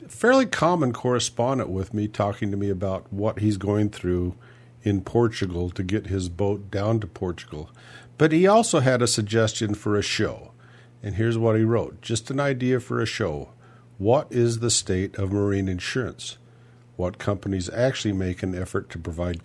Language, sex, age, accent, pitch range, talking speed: English, male, 50-69, American, 95-120 Hz, 175 wpm